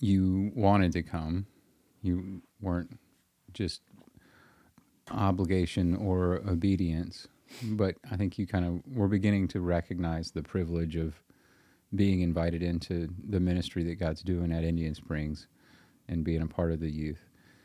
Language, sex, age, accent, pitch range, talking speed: English, male, 30-49, American, 85-95 Hz, 140 wpm